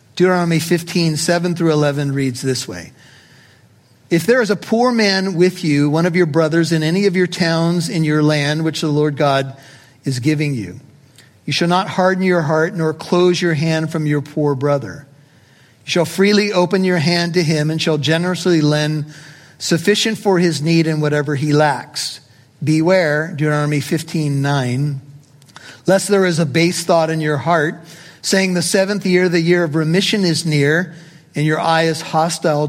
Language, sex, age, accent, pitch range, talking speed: English, male, 50-69, American, 145-180 Hz, 180 wpm